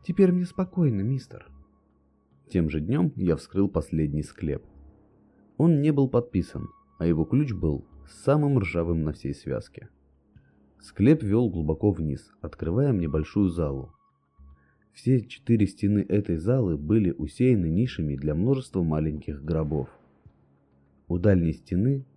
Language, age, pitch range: Russian, 30-49, 75-110 Hz